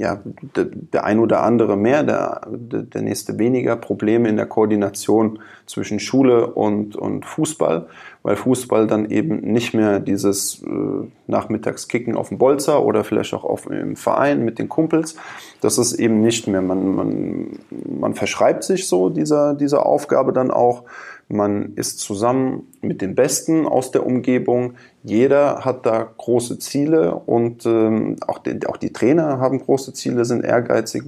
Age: 20-39